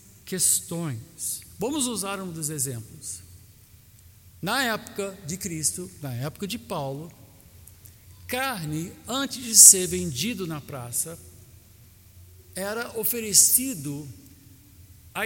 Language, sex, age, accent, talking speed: Portuguese, male, 60-79, Brazilian, 95 wpm